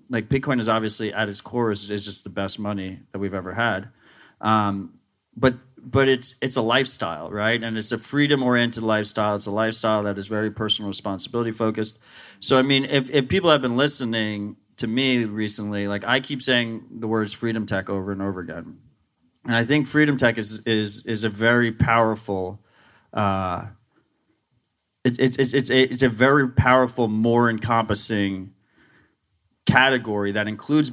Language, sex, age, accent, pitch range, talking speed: English, male, 30-49, American, 105-125 Hz, 175 wpm